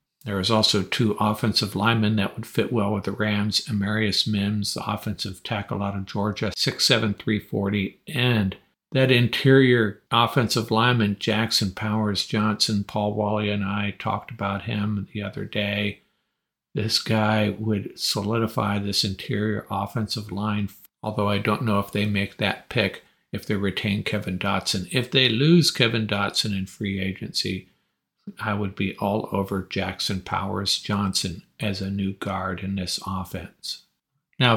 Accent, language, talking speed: American, English, 155 wpm